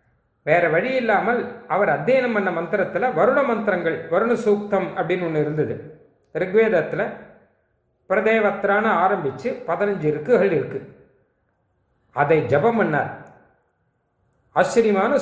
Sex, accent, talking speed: male, native, 90 wpm